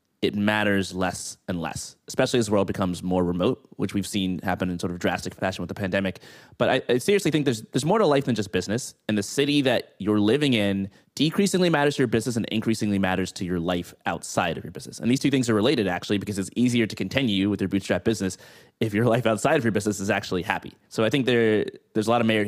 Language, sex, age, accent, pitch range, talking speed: English, male, 20-39, American, 95-115 Hz, 250 wpm